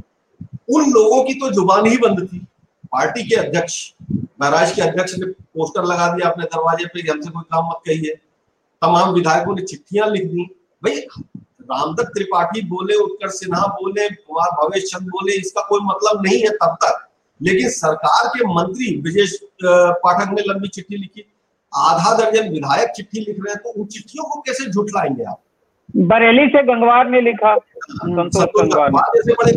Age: 50-69